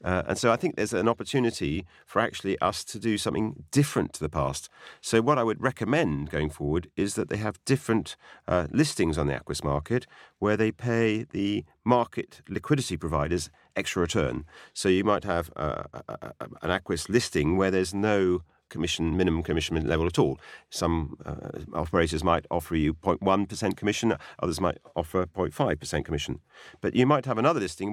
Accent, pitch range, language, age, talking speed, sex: British, 85-125 Hz, English, 40-59, 175 wpm, male